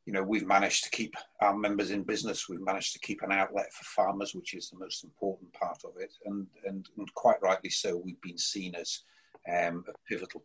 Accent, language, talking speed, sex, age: British, English, 225 wpm, male, 40-59